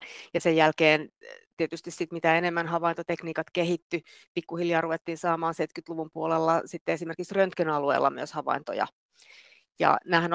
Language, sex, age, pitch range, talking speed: Finnish, female, 30-49, 160-185 Hz, 120 wpm